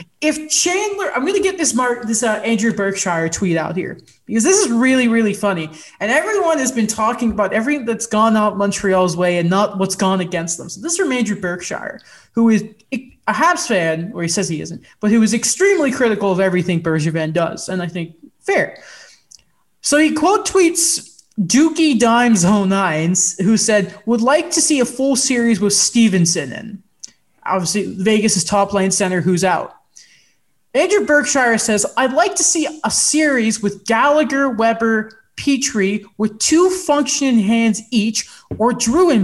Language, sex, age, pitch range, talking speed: English, male, 20-39, 200-280 Hz, 175 wpm